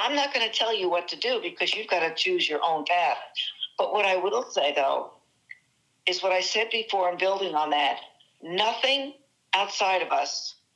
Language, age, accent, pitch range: English, 60-79, American, 170-230 Hz